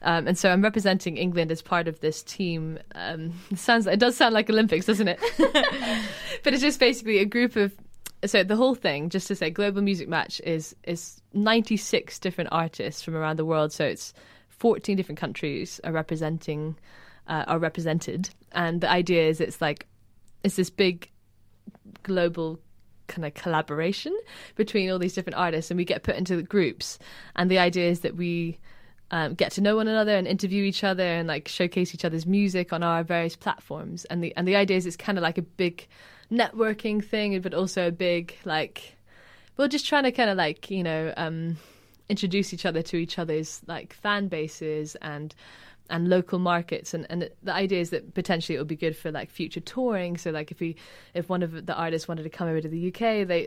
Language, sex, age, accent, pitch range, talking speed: English, female, 20-39, British, 165-200 Hz, 205 wpm